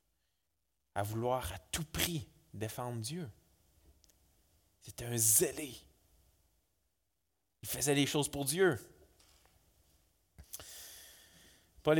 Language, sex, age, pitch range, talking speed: French, male, 30-49, 85-145 Hz, 85 wpm